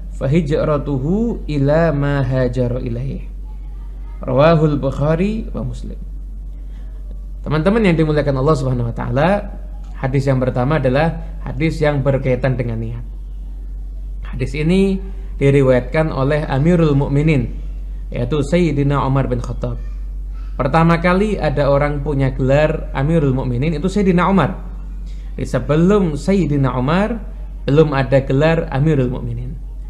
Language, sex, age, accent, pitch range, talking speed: Indonesian, male, 20-39, native, 135-185 Hz, 100 wpm